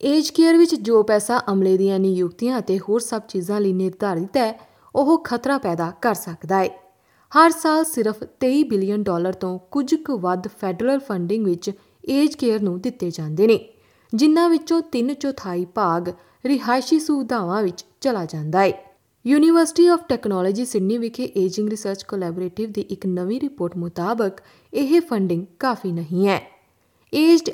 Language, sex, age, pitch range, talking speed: Punjabi, female, 20-39, 185-260 Hz, 130 wpm